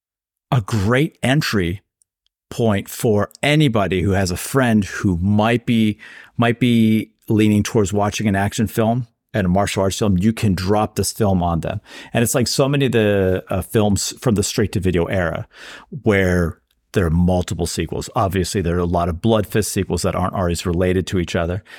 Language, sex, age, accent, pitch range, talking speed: English, male, 50-69, American, 90-105 Hz, 190 wpm